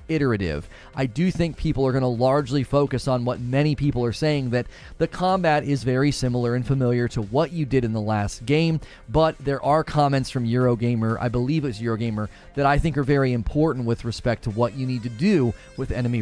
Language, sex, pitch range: English, male, 120-155 Hz